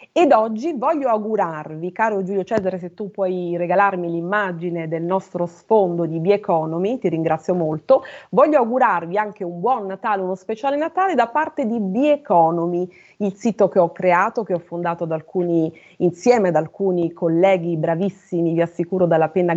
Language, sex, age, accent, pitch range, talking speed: Italian, female, 30-49, native, 175-240 Hz, 165 wpm